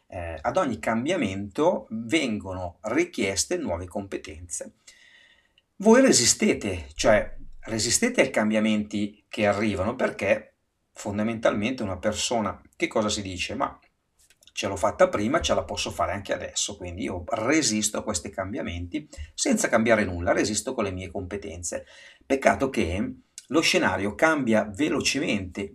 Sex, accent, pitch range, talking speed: male, native, 100-145 Hz, 125 wpm